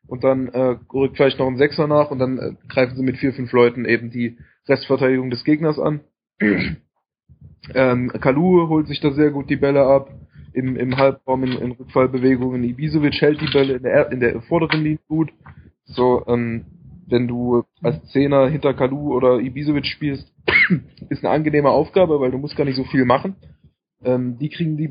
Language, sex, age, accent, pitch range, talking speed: German, male, 20-39, German, 125-150 Hz, 185 wpm